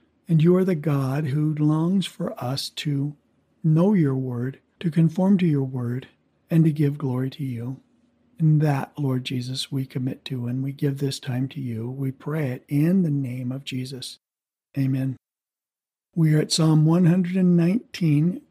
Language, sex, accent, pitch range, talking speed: English, male, American, 140-170 Hz, 170 wpm